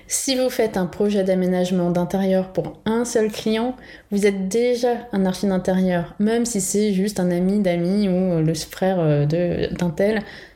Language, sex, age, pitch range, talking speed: French, female, 20-39, 185-225 Hz, 165 wpm